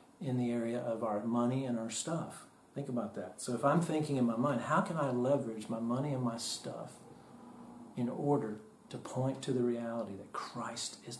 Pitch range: 120-140 Hz